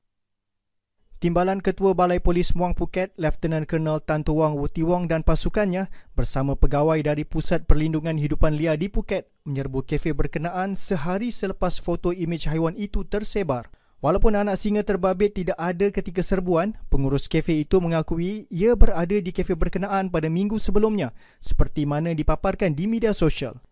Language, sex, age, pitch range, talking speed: Malay, male, 30-49, 160-200 Hz, 145 wpm